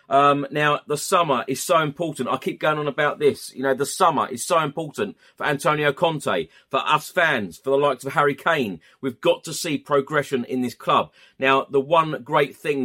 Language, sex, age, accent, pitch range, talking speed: English, male, 30-49, British, 120-140 Hz, 210 wpm